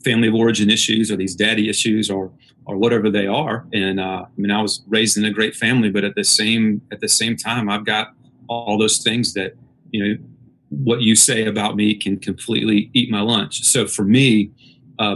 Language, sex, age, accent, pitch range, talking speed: English, male, 30-49, American, 100-115 Hz, 215 wpm